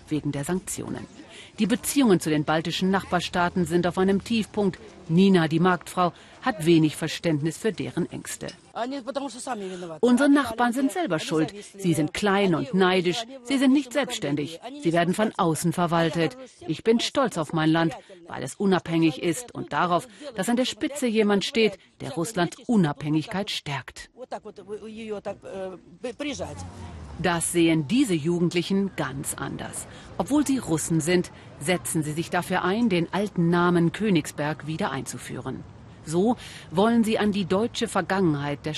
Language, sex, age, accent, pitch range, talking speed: German, female, 40-59, German, 160-215 Hz, 140 wpm